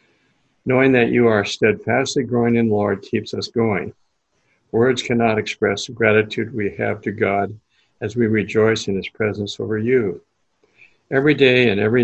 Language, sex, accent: English, male, American